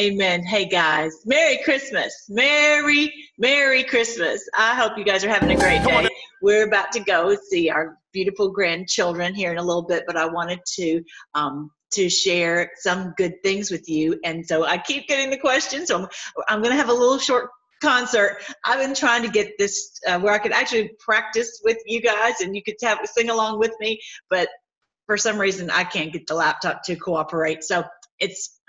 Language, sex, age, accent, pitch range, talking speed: English, female, 40-59, American, 180-255 Hz, 200 wpm